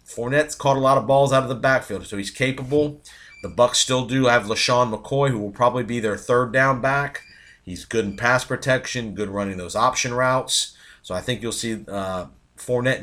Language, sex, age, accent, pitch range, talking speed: English, male, 40-59, American, 100-125 Hz, 210 wpm